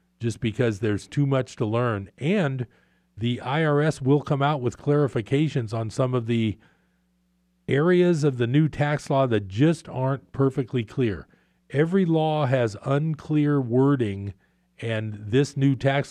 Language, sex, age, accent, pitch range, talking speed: English, male, 50-69, American, 110-140 Hz, 145 wpm